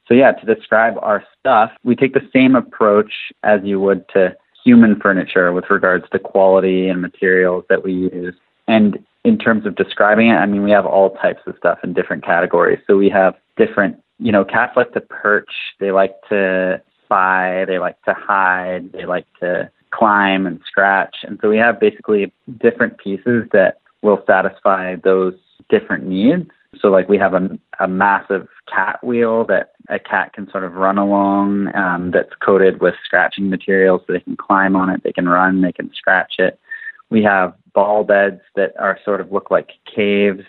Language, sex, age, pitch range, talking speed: English, male, 20-39, 95-110 Hz, 190 wpm